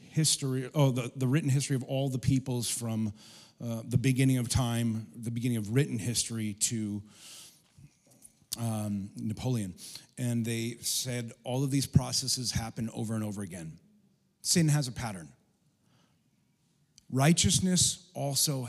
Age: 40-59